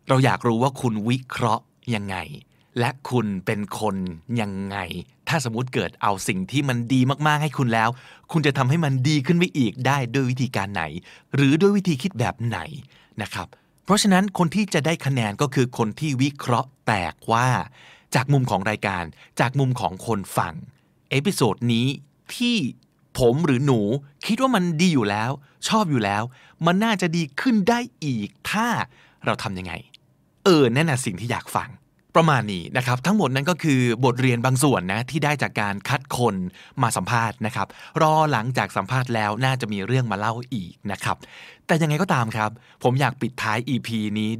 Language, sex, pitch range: Thai, male, 110-145 Hz